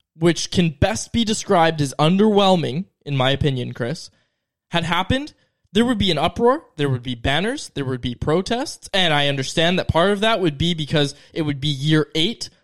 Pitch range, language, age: 145-195 Hz, English, 20-39